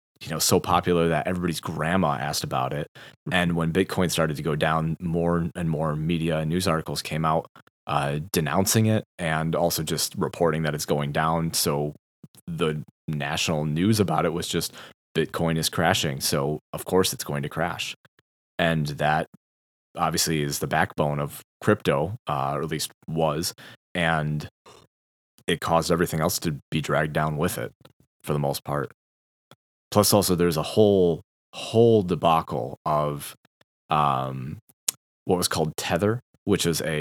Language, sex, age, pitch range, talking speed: English, male, 20-39, 75-90 Hz, 160 wpm